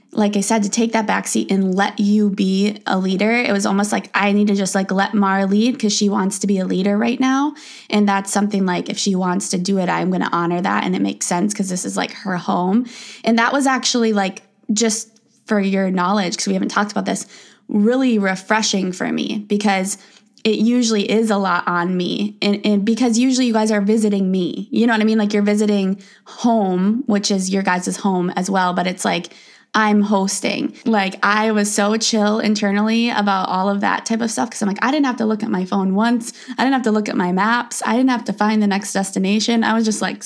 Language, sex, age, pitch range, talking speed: English, female, 20-39, 195-225 Hz, 240 wpm